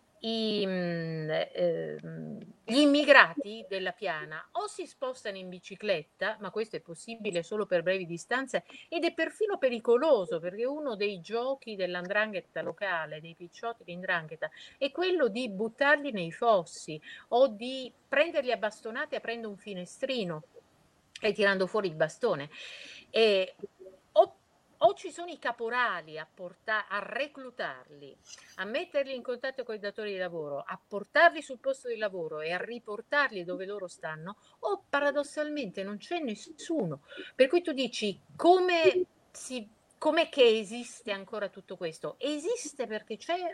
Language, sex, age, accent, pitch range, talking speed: Italian, female, 50-69, native, 180-275 Hz, 140 wpm